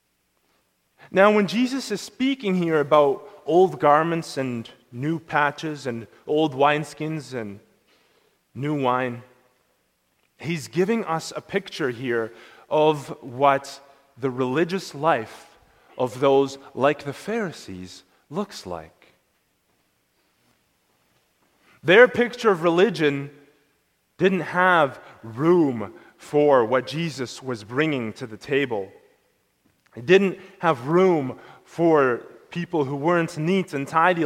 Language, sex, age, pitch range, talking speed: English, male, 30-49, 130-175 Hz, 110 wpm